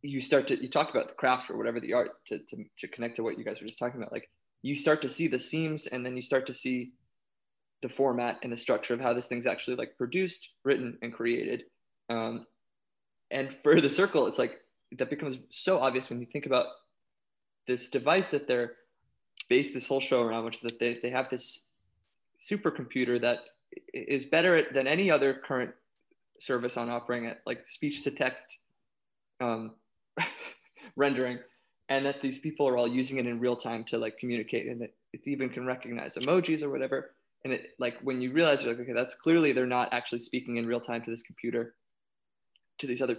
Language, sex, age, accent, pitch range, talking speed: English, male, 20-39, American, 120-135 Hz, 205 wpm